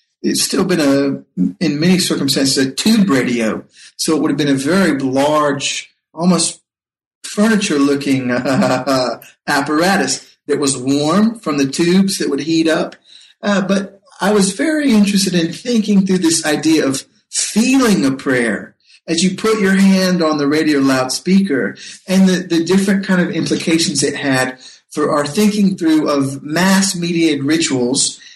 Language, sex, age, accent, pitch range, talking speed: English, male, 50-69, American, 140-190 Hz, 150 wpm